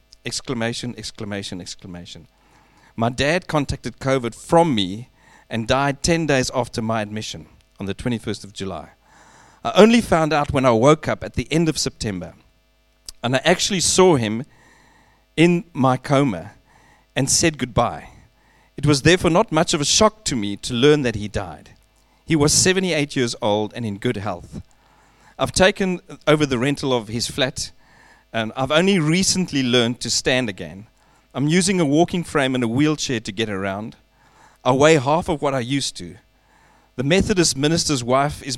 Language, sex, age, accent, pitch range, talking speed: English, male, 40-59, South African, 110-150 Hz, 170 wpm